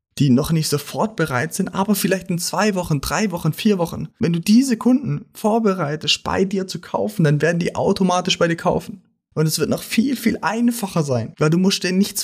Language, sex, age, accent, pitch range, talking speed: German, male, 30-49, German, 145-190 Hz, 215 wpm